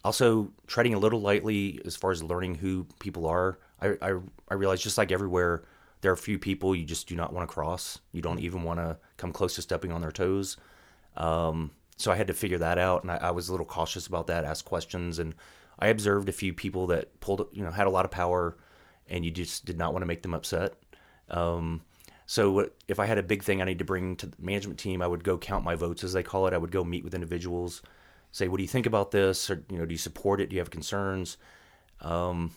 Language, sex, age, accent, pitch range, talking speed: English, male, 30-49, American, 85-95 Hz, 255 wpm